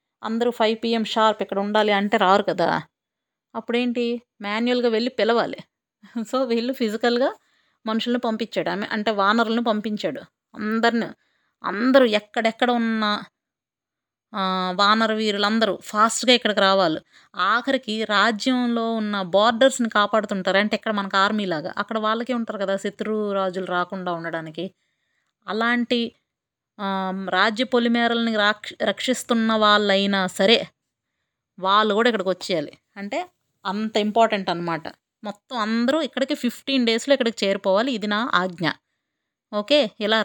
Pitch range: 200-235 Hz